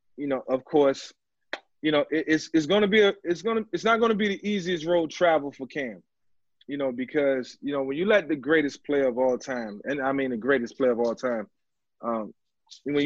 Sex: male